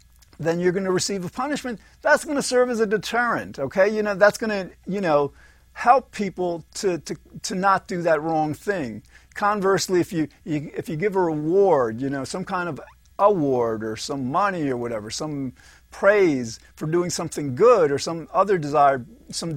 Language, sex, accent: English, male, American